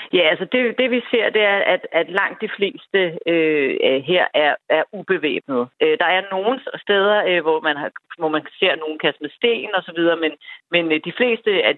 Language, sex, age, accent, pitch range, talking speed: Danish, female, 40-59, native, 155-220 Hz, 210 wpm